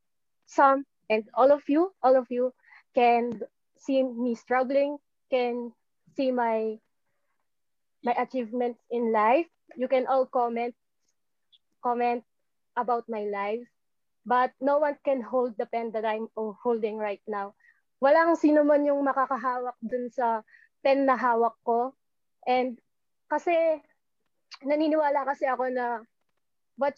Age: 20-39